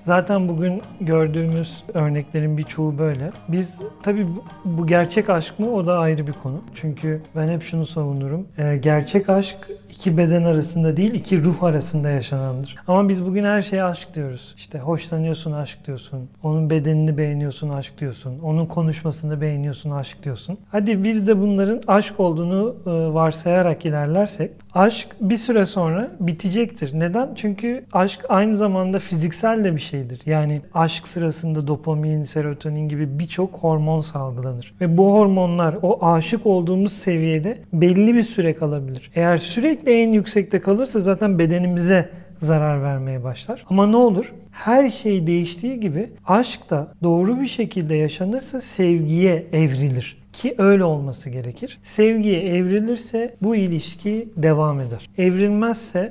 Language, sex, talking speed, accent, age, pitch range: Turkish, male, 140 wpm, native, 40-59, 155-200 Hz